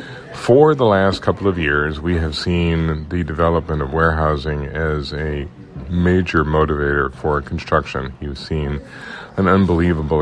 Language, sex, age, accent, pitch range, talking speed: English, male, 50-69, American, 75-85 Hz, 135 wpm